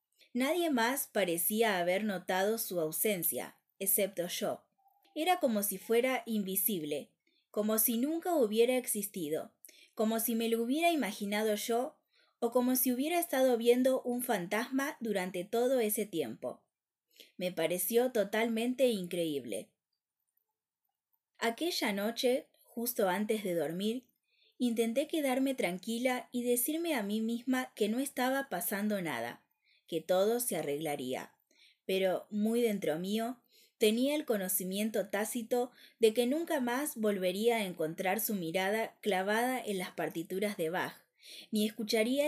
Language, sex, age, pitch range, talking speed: Spanish, female, 20-39, 190-250 Hz, 130 wpm